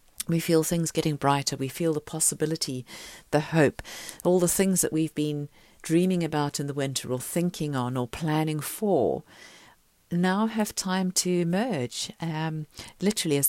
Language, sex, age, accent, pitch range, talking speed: English, female, 40-59, British, 140-170 Hz, 160 wpm